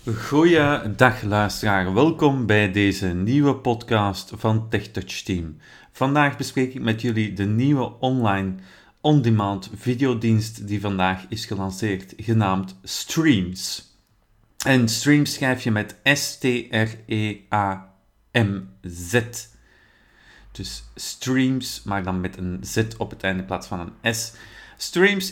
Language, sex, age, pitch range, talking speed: Dutch, male, 40-59, 100-130 Hz, 115 wpm